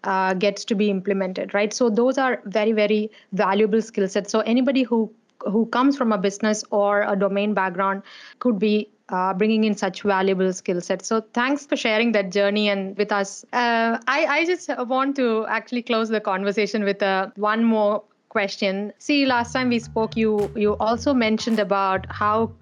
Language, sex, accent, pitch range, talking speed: English, female, Indian, 200-235 Hz, 185 wpm